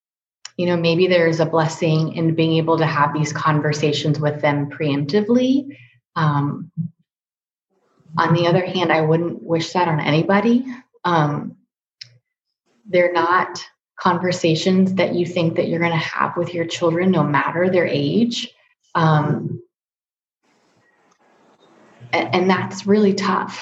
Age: 20-39